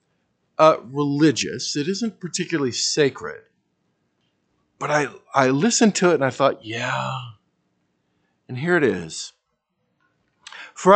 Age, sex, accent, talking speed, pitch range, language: 50-69, male, American, 115 wpm, 105-160 Hz, English